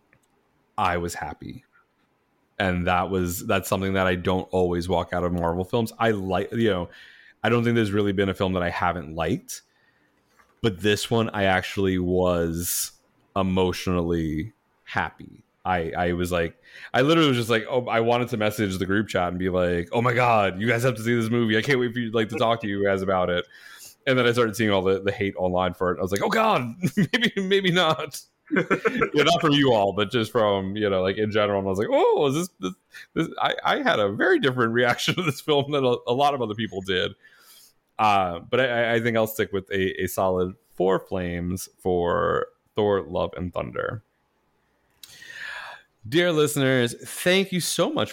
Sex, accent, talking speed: male, American, 205 wpm